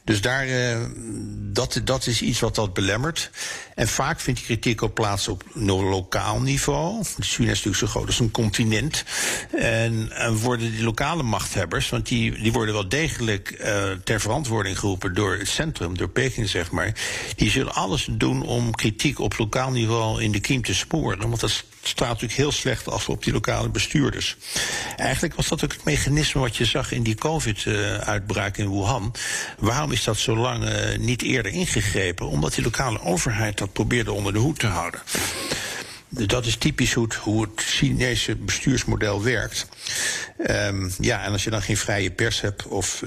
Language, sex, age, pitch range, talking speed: Dutch, male, 60-79, 100-120 Hz, 185 wpm